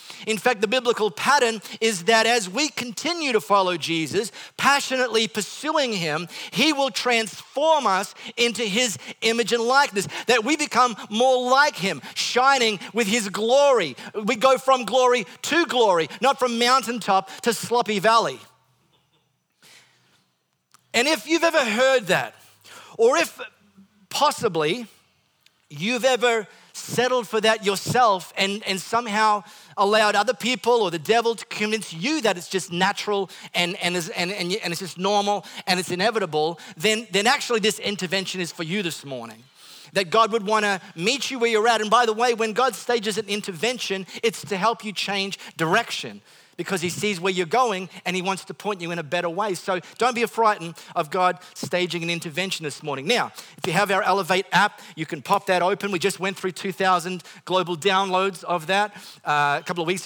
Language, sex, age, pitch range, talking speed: English, male, 40-59, 180-235 Hz, 175 wpm